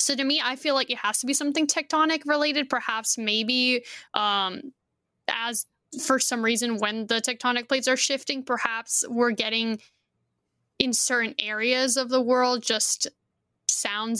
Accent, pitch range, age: American, 225-270 Hz, 10-29